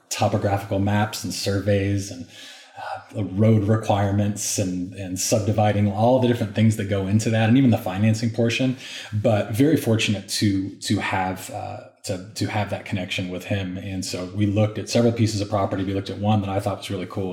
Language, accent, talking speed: English, American, 200 wpm